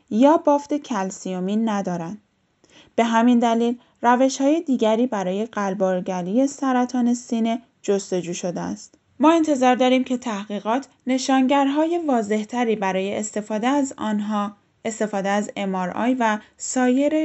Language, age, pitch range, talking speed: Persian, 10-29, 200-260 Hz, 120 wpm